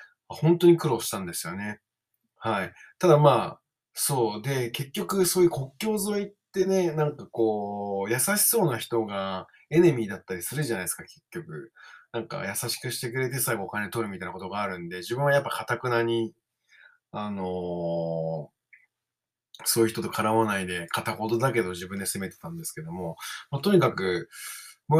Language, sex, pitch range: Japanese, male, 105-155 Hz